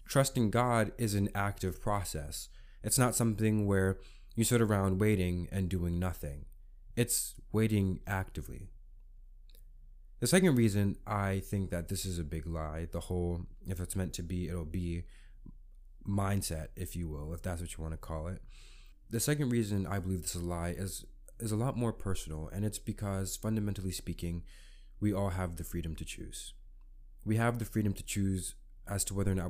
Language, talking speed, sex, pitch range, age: English, 180 wpm, male, 85-105 Hz, 20-39